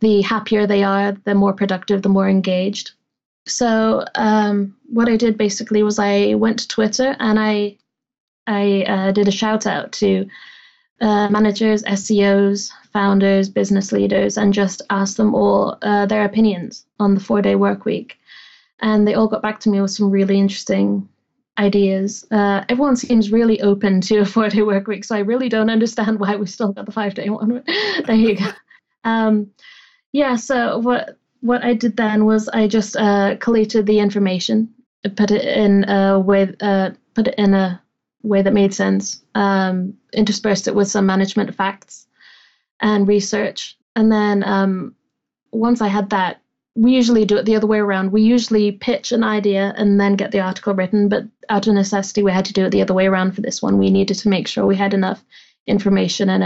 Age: 20-39